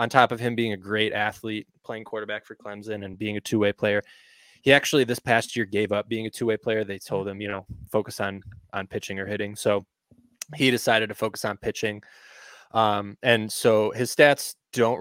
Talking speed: 210 wpm